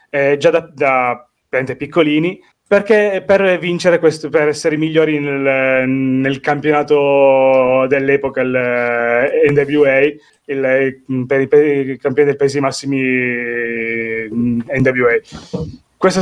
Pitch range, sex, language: 130-160 Hz, male, Italian